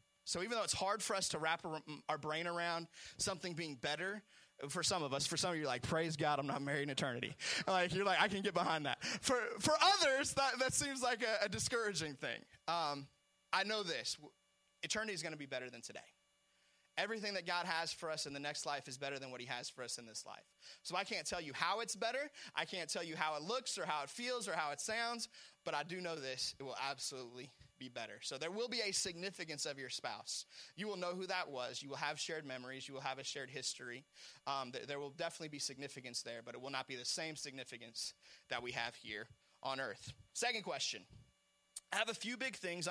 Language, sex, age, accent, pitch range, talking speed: English, male, 20-39, American, 135-185 Hz, 240 wpm